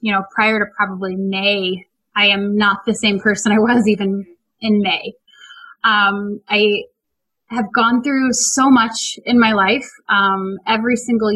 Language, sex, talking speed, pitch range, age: English, female, 160 wpm, 200-245 Hz, 20-39